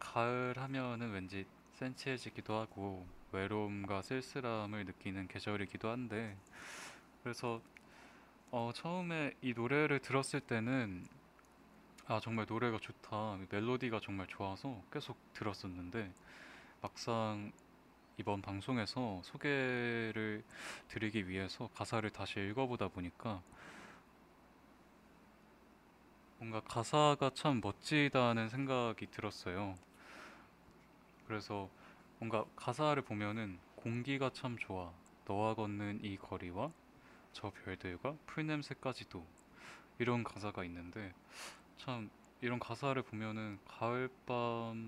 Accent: native